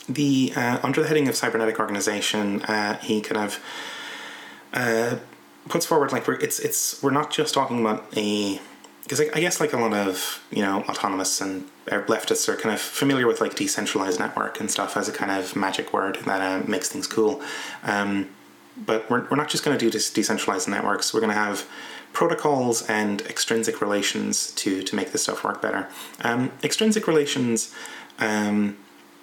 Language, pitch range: English, 105-145 Hz